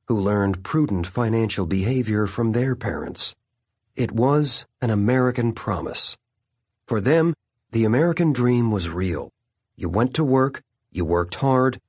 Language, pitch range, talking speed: English, 105-130 Hz, 135 wpm